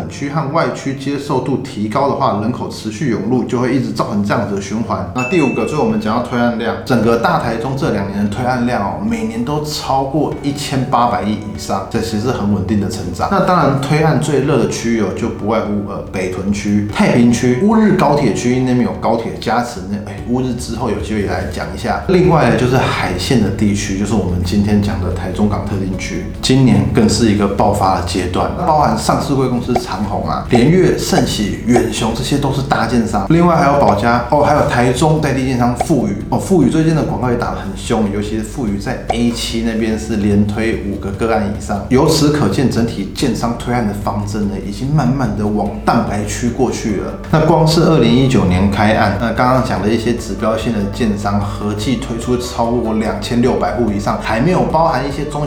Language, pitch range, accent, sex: Chinese, 105-130 Hz, native, male